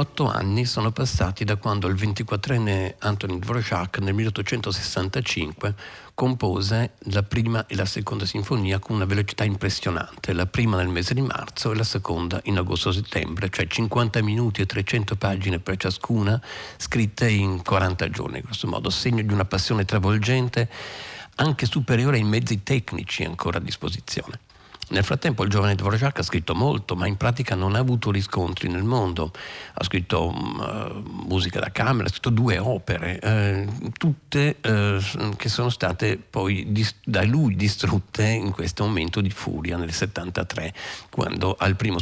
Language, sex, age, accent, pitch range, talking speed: Italian, male, 50-69, native, 95-115 Hz, 155 wpm